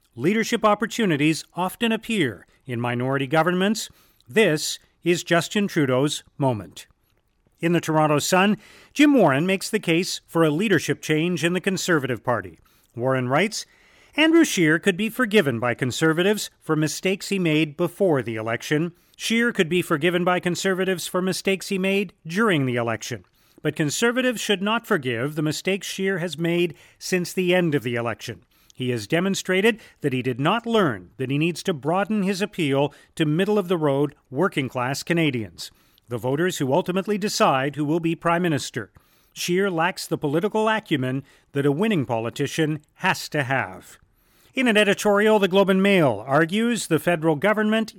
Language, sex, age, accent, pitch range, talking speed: English, male, 40-59, American, 140-200 Hz, 160 wpm